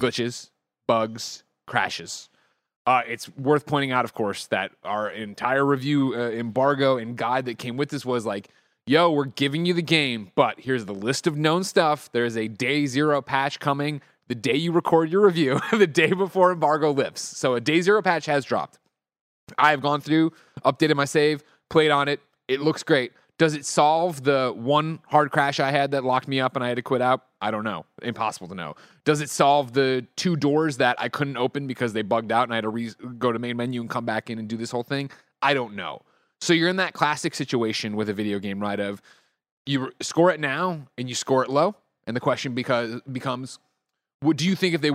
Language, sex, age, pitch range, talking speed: English, male, 30-49, 120-150 Hz, 225 wpm